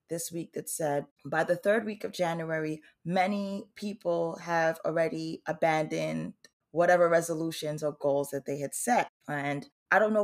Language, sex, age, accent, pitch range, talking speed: English, female, 20-39, American, 150-185 Hz, 160 wpm